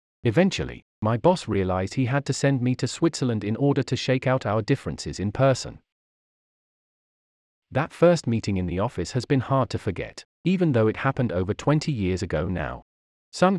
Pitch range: 95-145 Hz